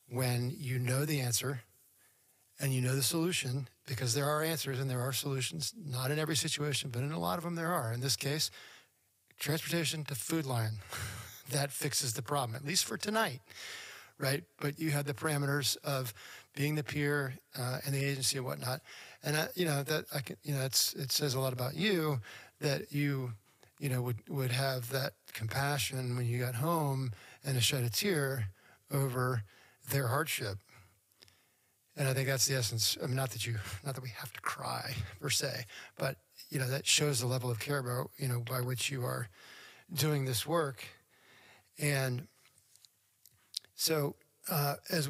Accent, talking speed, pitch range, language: American, 185 wpm, 125-145 Hz, English